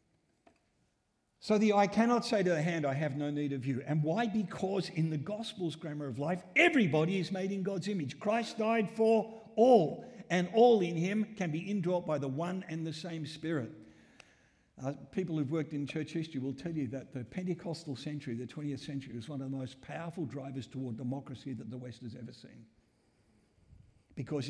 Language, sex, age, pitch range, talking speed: English, male, 50-69, 125-160 Hz, 195 wpm